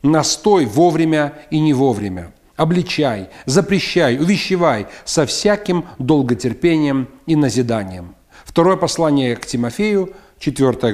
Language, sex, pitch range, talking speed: Russian, male, 140-180 Hz, 100 wpm